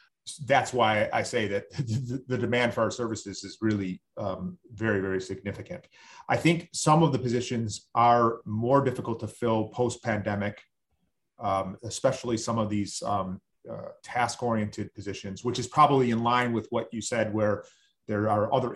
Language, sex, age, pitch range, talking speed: English, male, 30-49, 100-125 Hz, 160 wpm